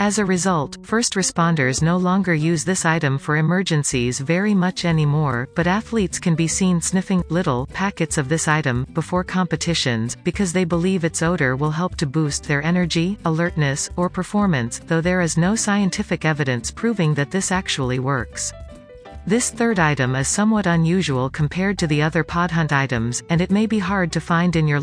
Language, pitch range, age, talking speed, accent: English, 145-185 Hz, 40-59, 180 wpm, American